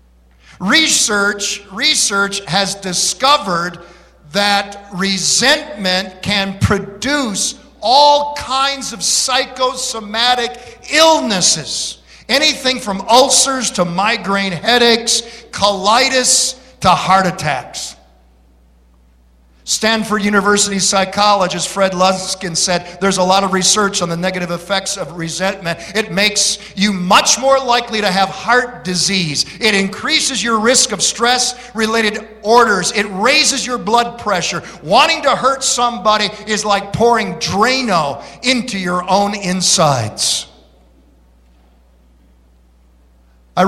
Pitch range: 175-225 Hz